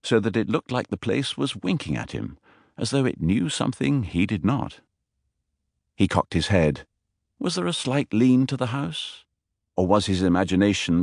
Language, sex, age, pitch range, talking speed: English, male, 50-69, 85-110 Hz, 190 wpm